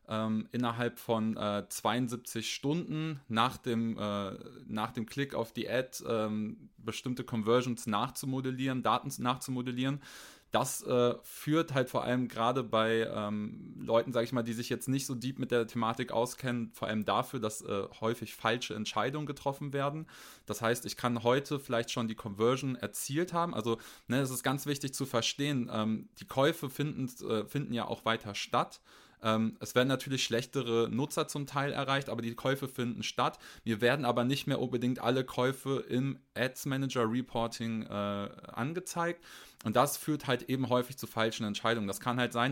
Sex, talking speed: male, 165 wpm